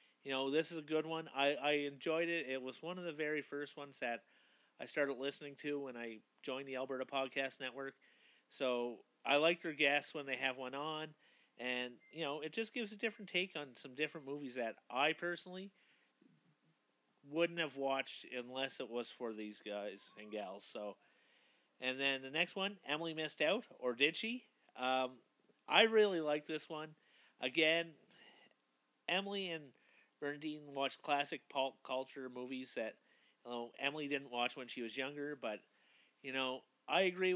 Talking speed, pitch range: 175 wpm, 130-165 Hz